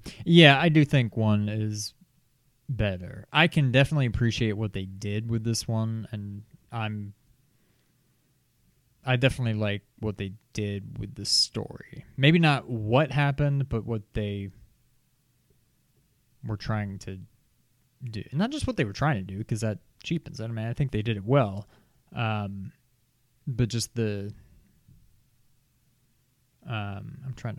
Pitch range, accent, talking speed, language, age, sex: 110-135 Hz, American, 145 wpm, English, 20-39, male